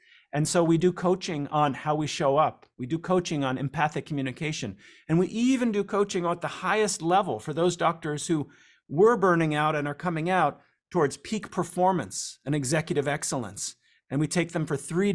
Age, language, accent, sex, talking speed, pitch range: 40-59, English, American, male, 190 wpm, 145-180 Hz